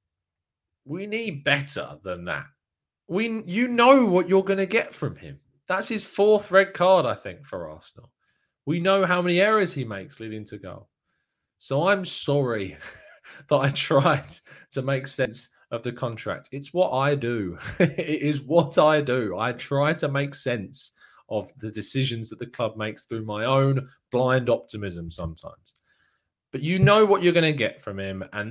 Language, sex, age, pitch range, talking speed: English, male, 20-39, 105-145 Hz, 175 wpm